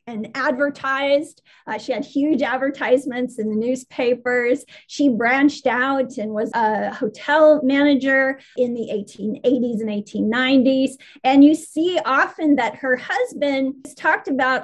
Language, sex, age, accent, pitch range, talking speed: English, female, 30-49, American, 240-290 Hz, 135 wpm